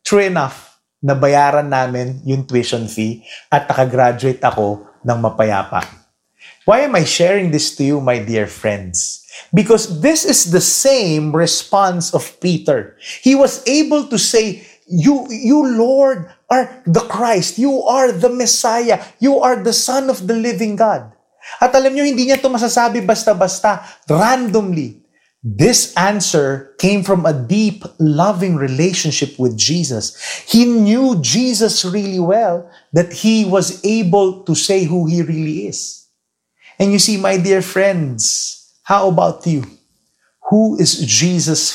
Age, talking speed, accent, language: 30-49, 140 wpm, Filipino, English